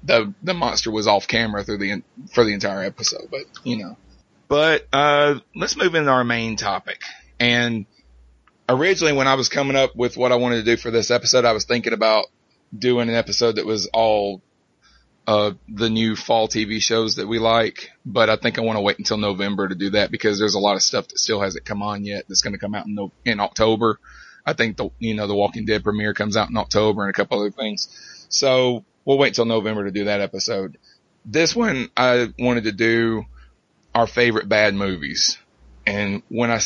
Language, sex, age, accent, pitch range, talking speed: English, male, 30-49, American, 105-120 Hz, 210 wpm